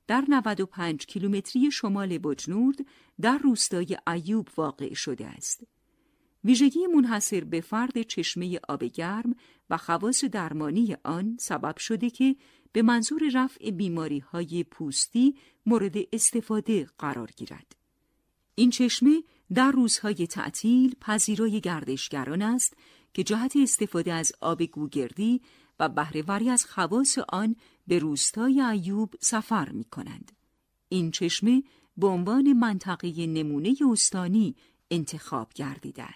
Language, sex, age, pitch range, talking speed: Persian, female, 50-69, 170-255 Hz, 115 wpm